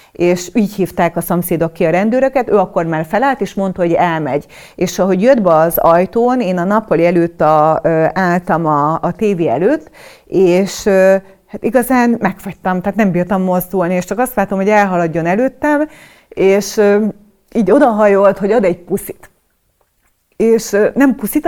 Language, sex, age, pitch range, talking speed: Hungarian, female, 30-49, 175-220 Hz, 160 wpm